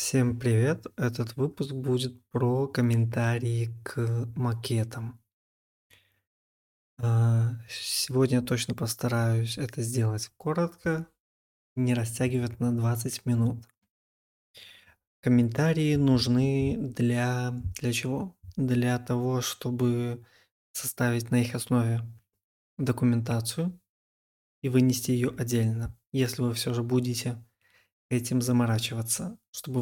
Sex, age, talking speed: male, 20-39, 90 wpm